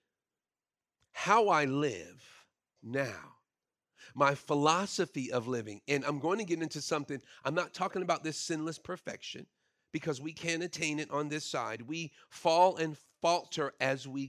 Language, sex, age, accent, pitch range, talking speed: English, male, 40-59, American, 155-205 Hz, 150 wpm